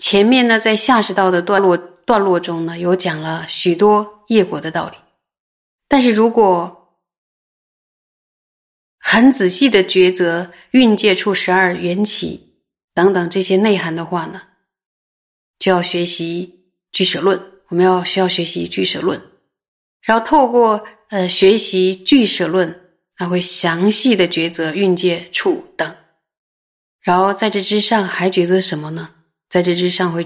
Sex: female